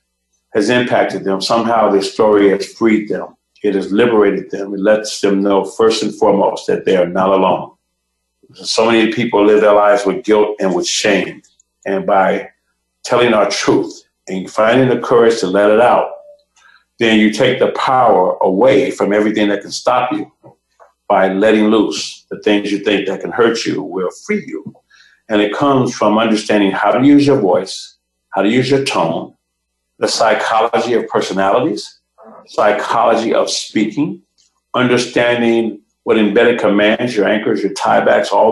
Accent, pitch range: American, 100-115 Hz